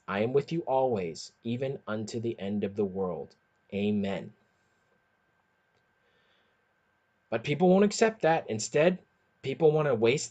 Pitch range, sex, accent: 130-185 Hz, male, American